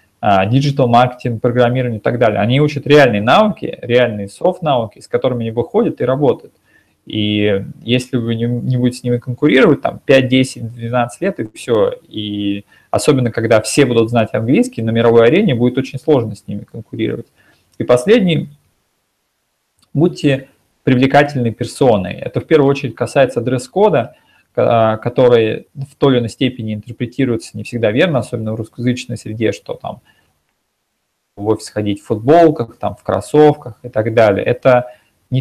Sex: male